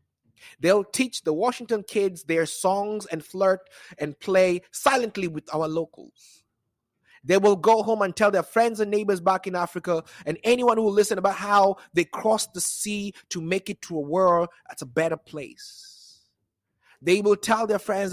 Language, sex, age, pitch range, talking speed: English, male, 30-49, 150-195 Hz, 180 wpm